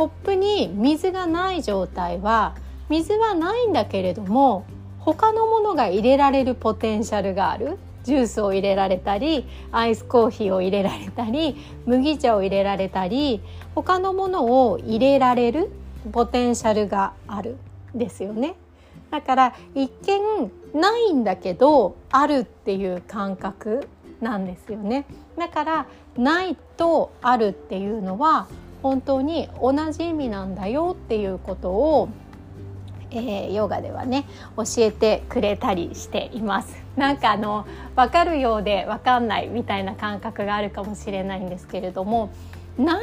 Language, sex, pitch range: Japanese, female, 195-275 Hz